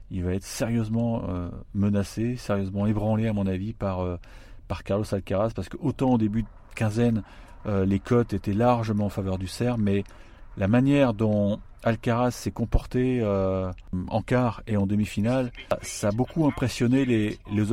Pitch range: 95-115 Hz